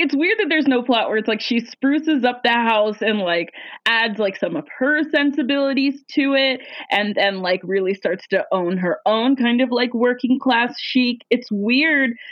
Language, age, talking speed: English, 20-39, 200 wpm